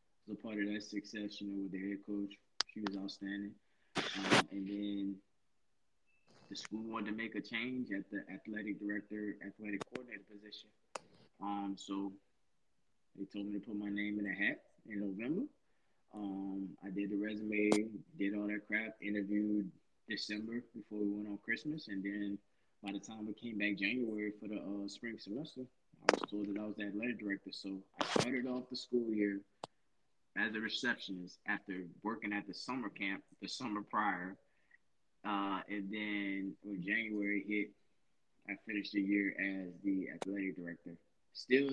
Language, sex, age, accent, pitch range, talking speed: English, male, 20-39, American, 100-105 Hz, 170 wpm